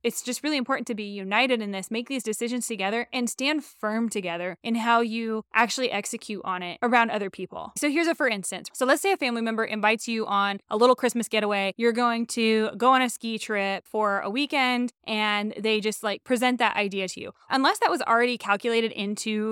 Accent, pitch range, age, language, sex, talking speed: American, 210-250 Hz, 20-39, English, female, 220 wpm